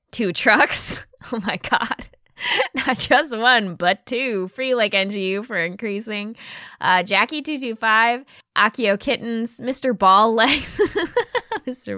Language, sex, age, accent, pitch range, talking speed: English, female, 10-29, American, 190-255 Hz, 115 wpm